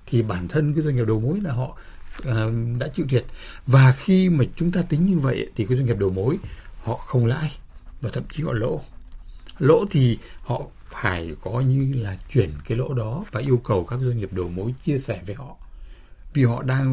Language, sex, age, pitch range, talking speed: Vietnamese, male, 60-79, 100-130 Hz, 215 wpm